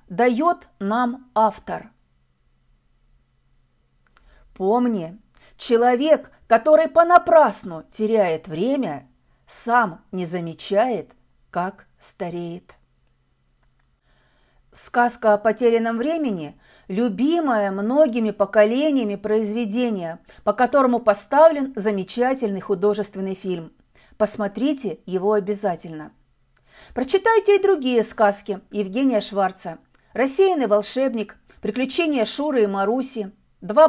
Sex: female